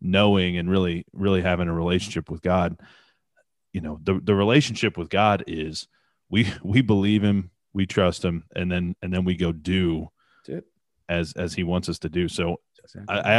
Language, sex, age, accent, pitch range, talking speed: English, male, 30-49, American, 90-110 Hz, 185 wpm